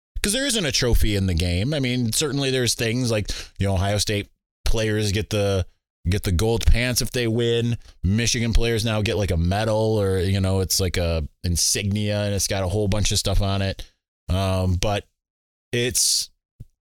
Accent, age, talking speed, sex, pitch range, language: American, 20-39, 195 wpm, male, 90-120 Hz, English